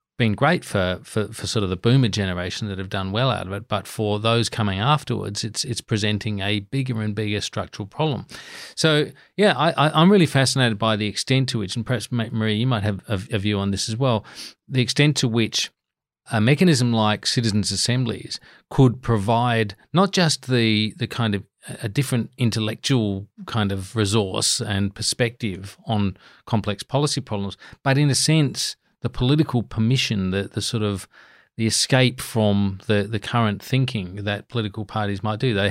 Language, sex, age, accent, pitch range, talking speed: English, male, 40-59, Australian, 105-125 Hz, 180 wpm